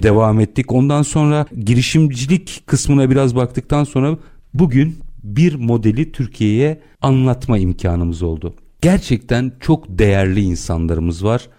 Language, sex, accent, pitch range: Turkish, male, native, 95-135 Hz